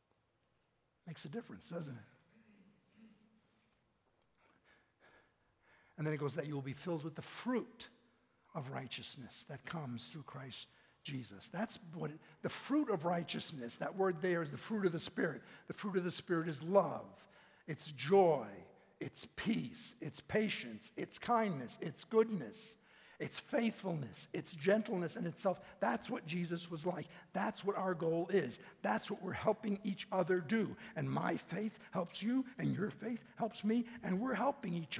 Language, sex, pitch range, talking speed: English, male, 145-215 Hz, 160 wpm